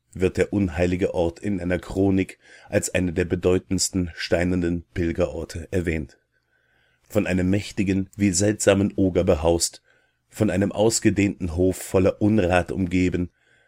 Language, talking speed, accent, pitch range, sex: German, 125 wpm, German, 85-100 Hz, male